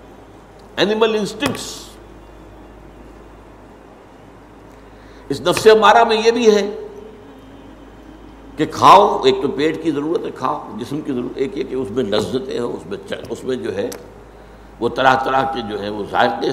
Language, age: Urdu, 60-79